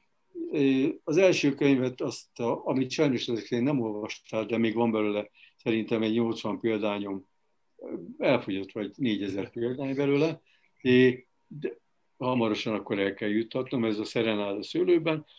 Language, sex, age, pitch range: Hungarian, male, 60-79, 110-135 Hz